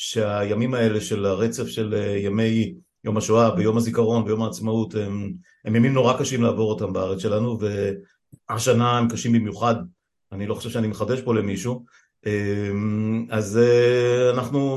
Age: 50-69